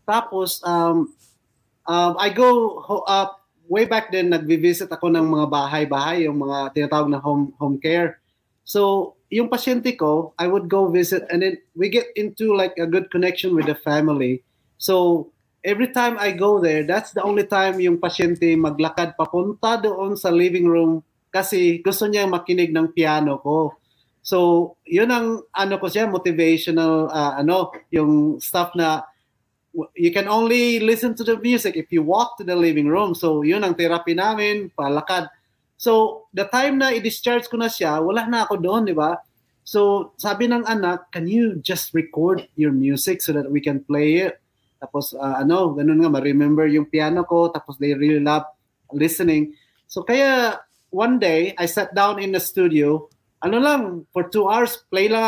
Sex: male